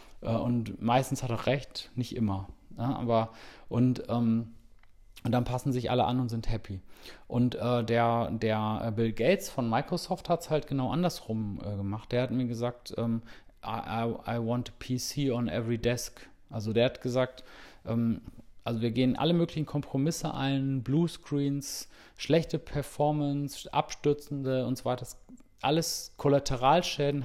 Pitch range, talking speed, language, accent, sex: 115-135 Hz, 150 wpm, German, German, male